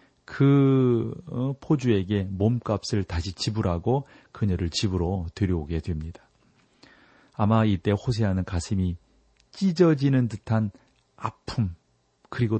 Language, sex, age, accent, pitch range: Korean, male, 40-59, native, 100-130 Hz